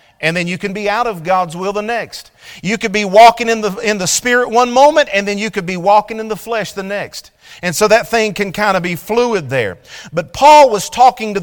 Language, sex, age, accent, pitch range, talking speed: English, male, 40-59, American, 185-240 Hz, 250 wpm